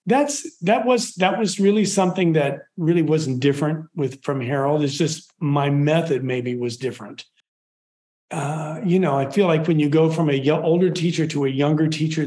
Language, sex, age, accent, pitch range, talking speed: English, male, 40-59, American, 135-165 Hz, 190 wpm